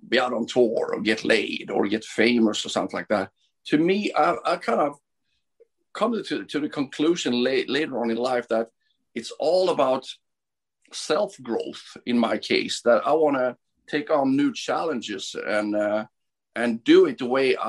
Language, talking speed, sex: English, 185 wpm, male